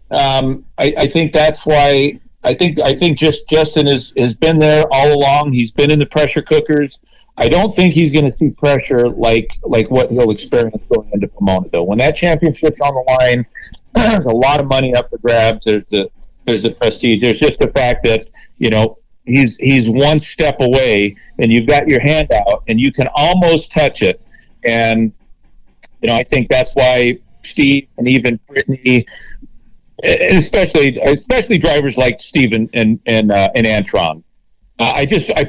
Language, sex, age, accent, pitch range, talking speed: English, male, 40-59, American, 120-155 Hz, 185 wpm